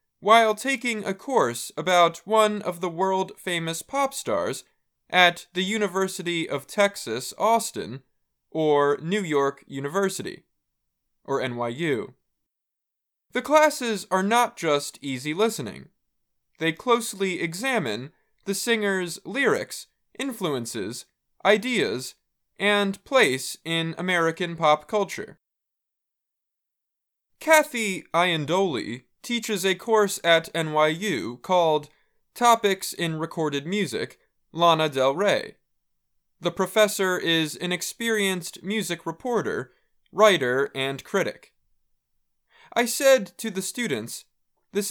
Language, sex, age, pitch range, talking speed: English, male, 20-39, 160-215 Hz, 100 wpm